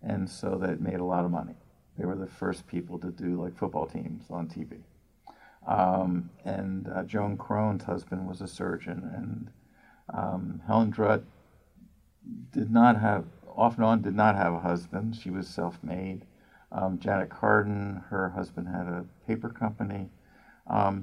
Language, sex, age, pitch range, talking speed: English, male, 50-69, 90-110 Hz, 165 wpm